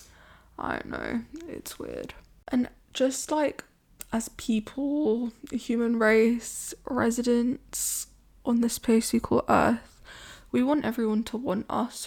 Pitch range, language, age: 225-255 Hz, English, 10-29